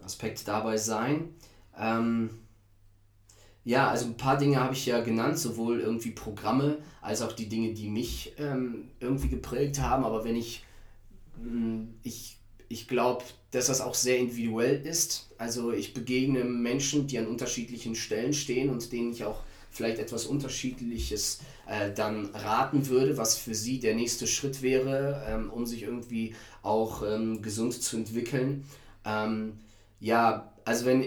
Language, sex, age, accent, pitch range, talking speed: German, male, 20-39, German, 110-130 Hz, 150 wpm